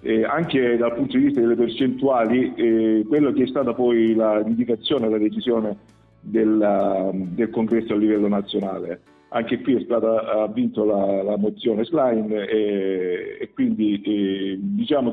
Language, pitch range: Italian, 110-130 Hz